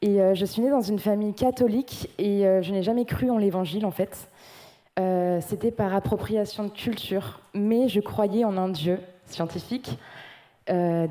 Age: 20-39